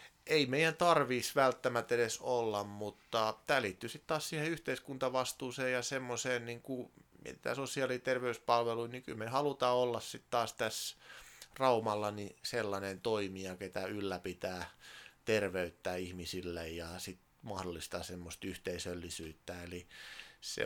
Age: 30-49